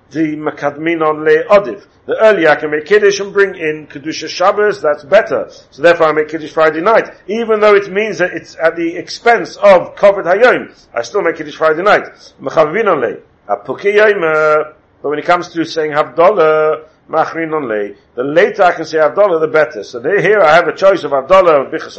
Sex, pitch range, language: male, 155-200 Hz, English